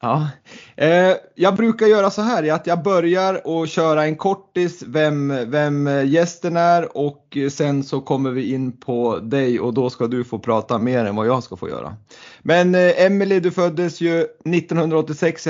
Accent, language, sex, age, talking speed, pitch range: native, Swedish, male, 30-49, 170 wpm, 145-170 Hz